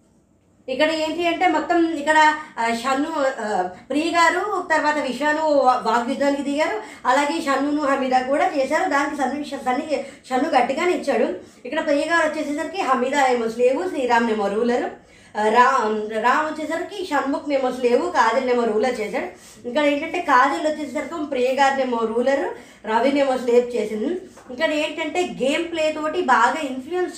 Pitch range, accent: 245-300 Hz, native